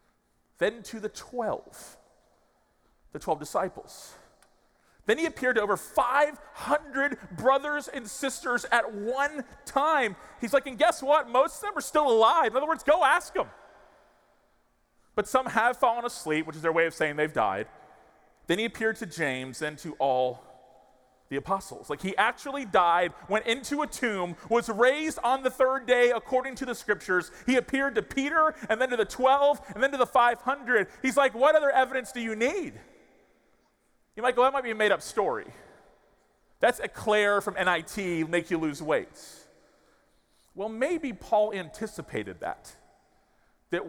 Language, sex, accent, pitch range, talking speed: English, male, American, 190-270 Hz, 170 wpm